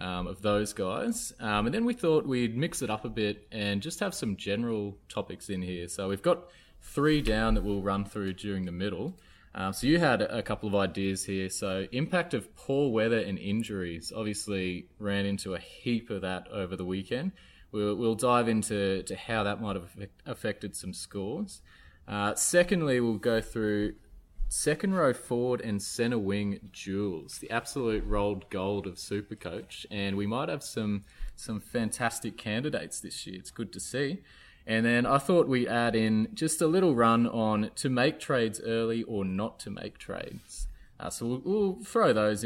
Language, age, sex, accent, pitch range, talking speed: English, 20-39, male, Australian, 100-120 Hz, 185 wpm